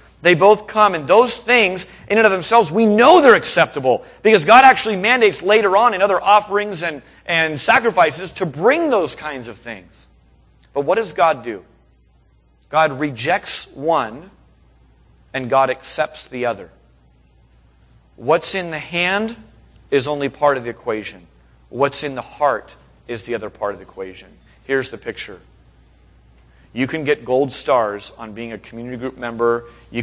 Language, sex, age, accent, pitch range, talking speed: English, male, 40-59, American, 100-150 Hz, 160 wpm